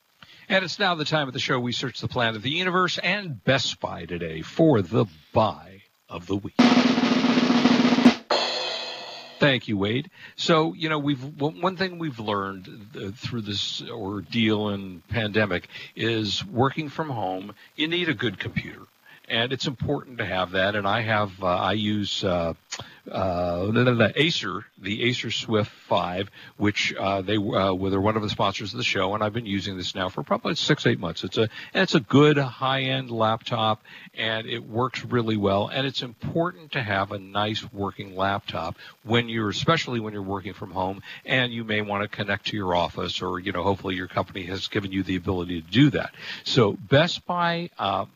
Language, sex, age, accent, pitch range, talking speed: English, male, 60-79, American, 100-140 Hz, 185 wpm